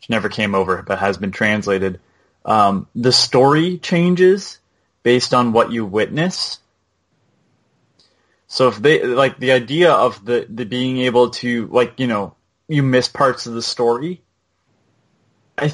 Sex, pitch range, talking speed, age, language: male, 115-145 Hz, 150 wpm, 20-39, English